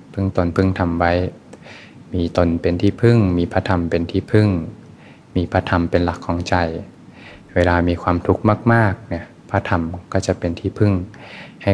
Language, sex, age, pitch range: Thai, male, 20-39, 85-95 Hz